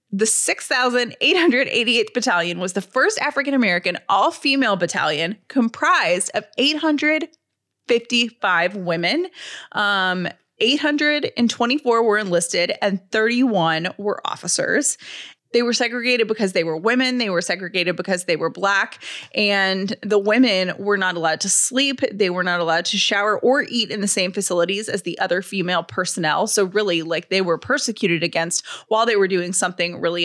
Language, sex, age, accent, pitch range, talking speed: English, female, 20-39, American, 185-245 Hz, 145 wpm